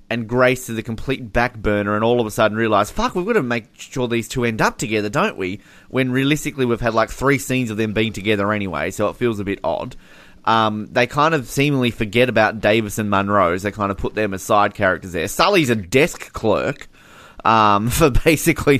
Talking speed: 225 wpm